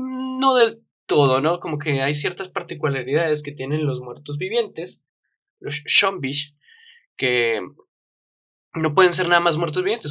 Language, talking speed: Spanish, 140 wpm